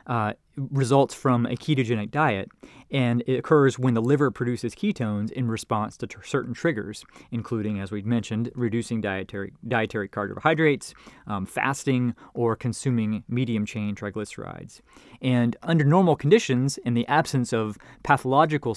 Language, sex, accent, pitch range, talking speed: English, male, American, 105-135 Hz, 135 wpm